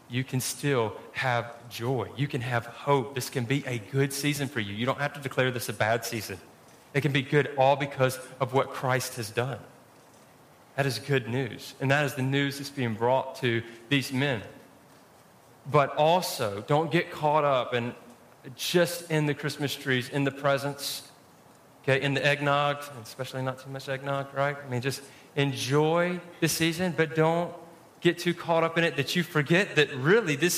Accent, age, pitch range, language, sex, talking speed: American, 30-49, 130-170 Hz, English, male, 185 wpm